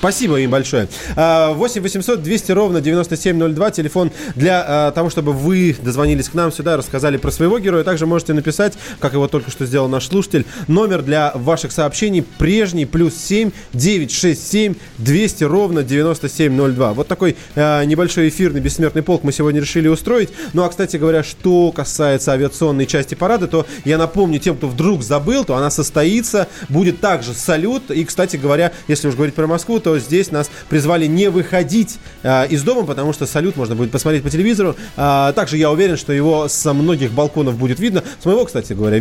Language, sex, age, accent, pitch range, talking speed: Russian, male, 20-39, native, 140-175 Hz, 175 wpm